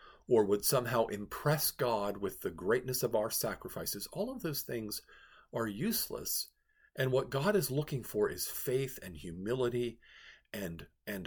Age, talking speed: 50-69, 155 wpm